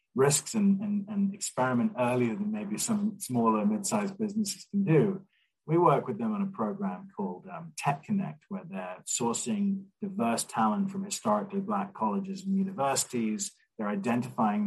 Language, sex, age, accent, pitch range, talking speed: English, male, 30-49, British, 165-210 Hz, 160 wpm